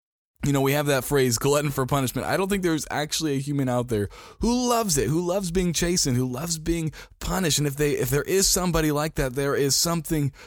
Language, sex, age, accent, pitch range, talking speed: English, male, 20-39, American, 120-160 Hz, 235 wpm